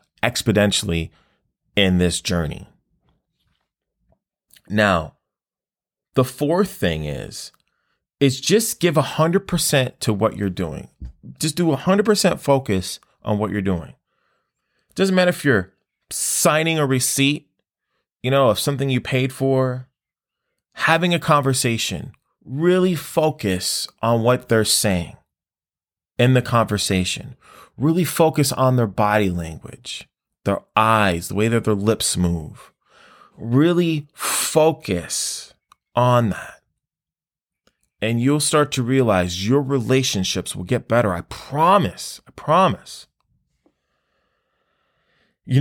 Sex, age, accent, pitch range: male, 30-49, American, 105-145 Hz